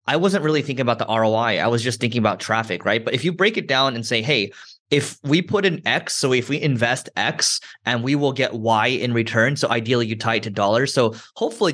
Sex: male